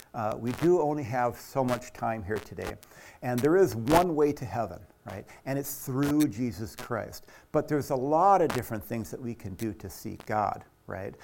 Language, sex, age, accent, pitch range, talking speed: English, male, 60-79, American, 110-140 Hz, 205 wpm